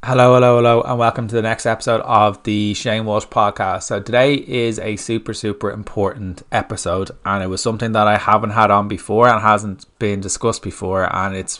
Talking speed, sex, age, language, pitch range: 200 wpm, male, 20-39, English, 95-110 Hz